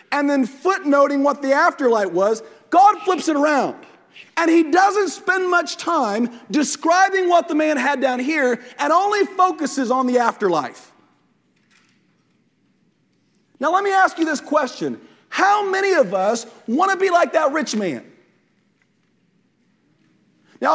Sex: male